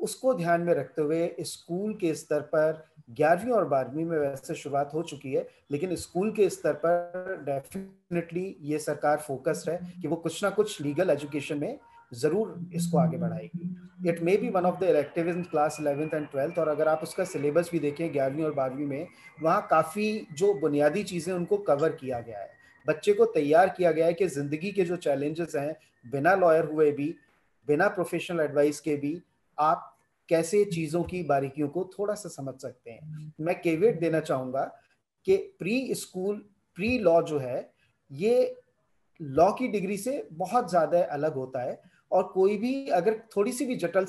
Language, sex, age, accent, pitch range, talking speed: Hindi, male, 30-49, native, 150-195 Hz, 175 wpm